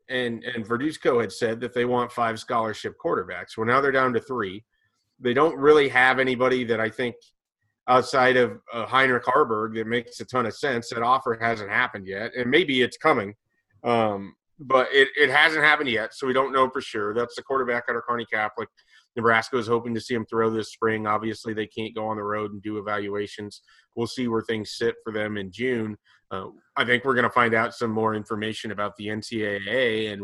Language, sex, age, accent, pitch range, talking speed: English, male, 30-49, American, 105-125 Hz, 210 wpm